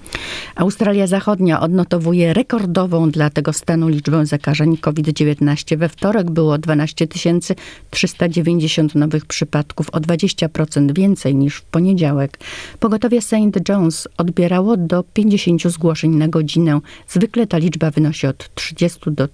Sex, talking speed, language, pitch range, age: female, 120 wpm, Polish, 150-185 Hz, 40-59